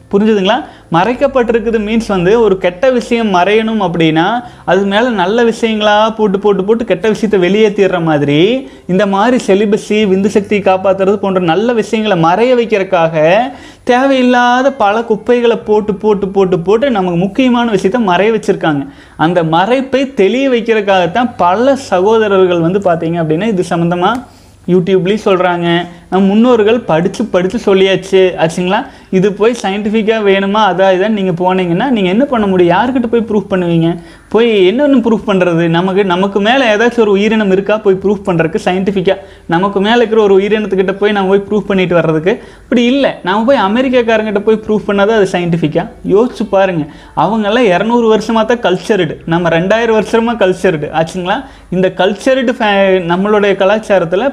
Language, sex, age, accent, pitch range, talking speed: Tamil, male, 30-49, native, 185-225 Hz, 140 wpm